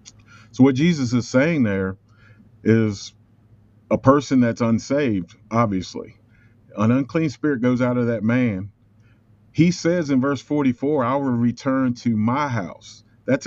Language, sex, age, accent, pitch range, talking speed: English, male, 40-59, American, 105-120 Hz, 145 wpm